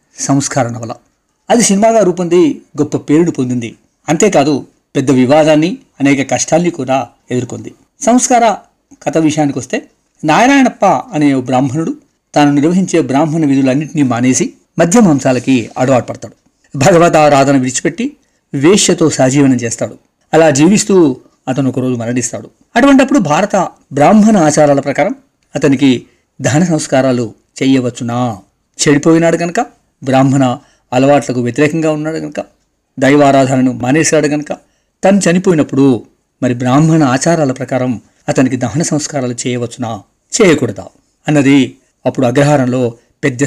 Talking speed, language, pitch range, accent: 105 wpm, Telugu, 130-165 Hz, native